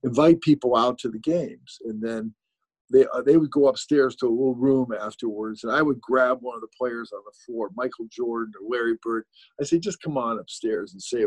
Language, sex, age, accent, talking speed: English, male, 50-69, American, 230 wpm